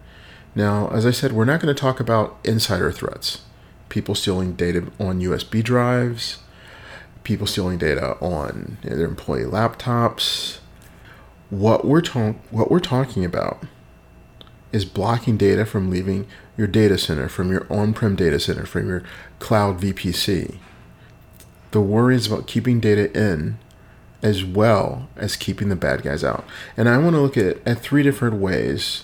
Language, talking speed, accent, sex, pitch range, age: English, 150 wpm, American, male, 95-120 Hz, 40-59